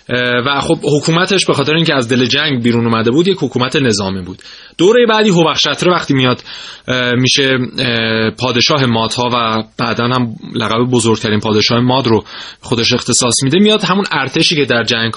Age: 20-39